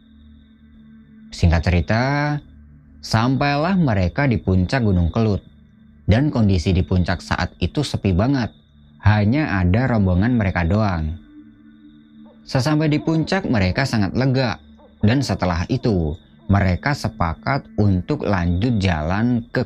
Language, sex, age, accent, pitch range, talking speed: Indonesian, male, 20-39, native, 85-135 Hz, 110 wpm